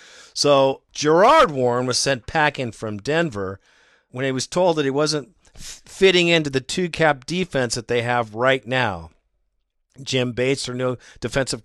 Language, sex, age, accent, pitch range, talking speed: English, male, 50-69, American, 120-160 Hz, 155 wpm